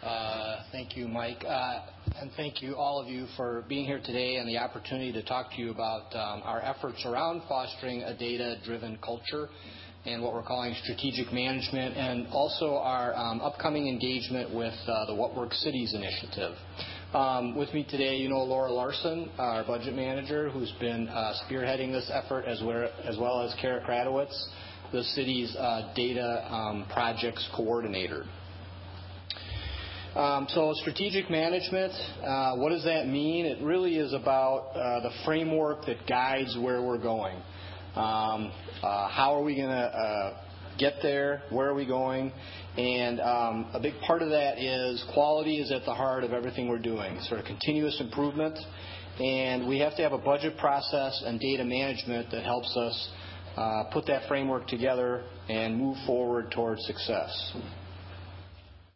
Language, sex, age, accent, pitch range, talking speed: English, male, 40-59, American, 110-135 Hz, 160 wpm